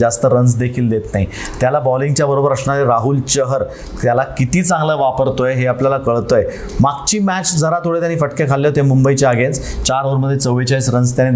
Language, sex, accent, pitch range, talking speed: Marathi, male, native, 120-140 Hz, 135 wpm